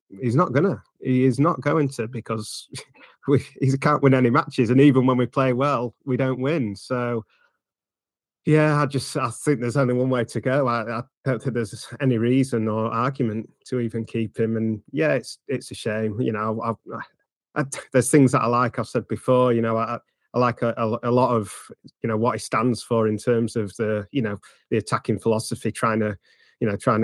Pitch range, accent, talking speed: 110-135 Hz, British, 205 wpm